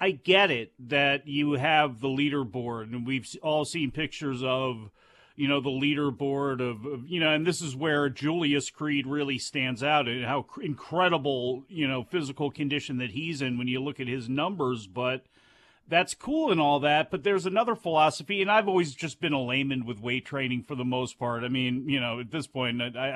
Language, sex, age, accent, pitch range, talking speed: English, male, 40-59, American, 140-185 Hz, 205 wpm